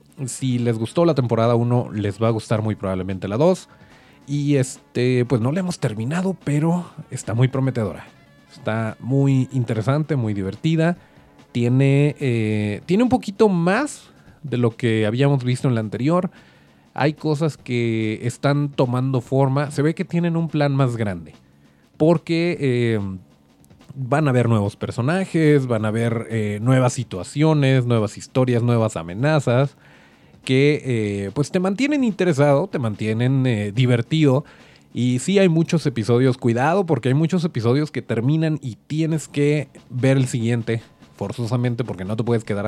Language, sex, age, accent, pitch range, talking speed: Spanish, male, 30-49, Mexican, 110-155 Hz, 150 wpm